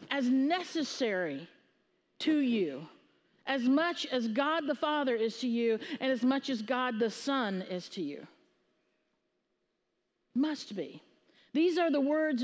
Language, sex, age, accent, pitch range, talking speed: English, female, 50-69, American, 225-285 Hz, 140 wpm